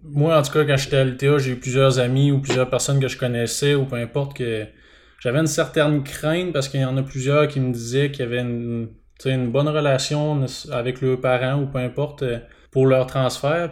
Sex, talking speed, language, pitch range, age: male, 225 wpm, French, 120-145 Hz, 20-39